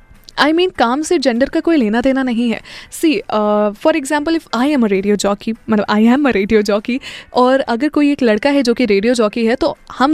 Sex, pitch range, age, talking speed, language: female, 235-325 Hz, 10-29, 245 wpm, Hindi